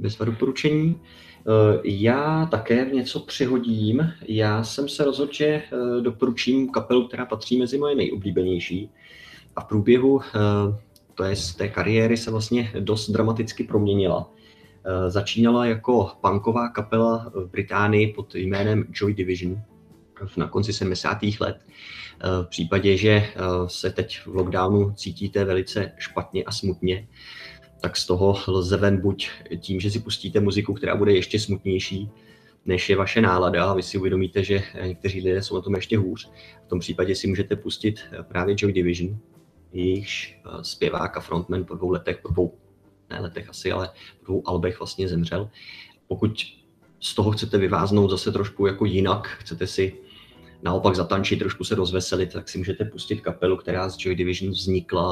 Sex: male